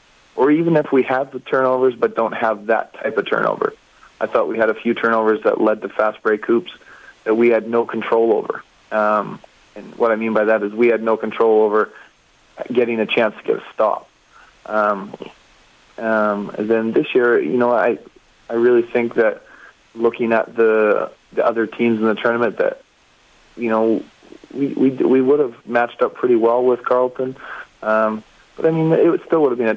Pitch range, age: 110-125 Hz, 30-49